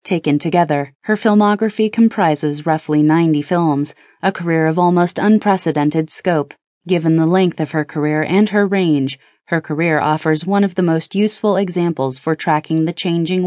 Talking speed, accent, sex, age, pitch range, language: 160 wpm, American, female, 30-49, 150-190 Hz, English